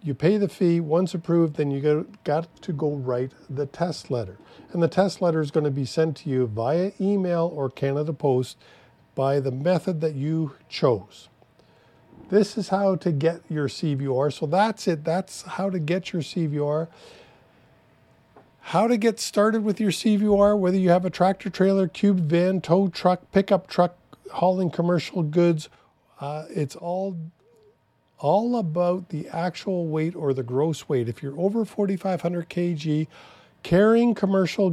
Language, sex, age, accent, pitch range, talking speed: English, male, 50-69, American, 150-195 Hz, 160 wpm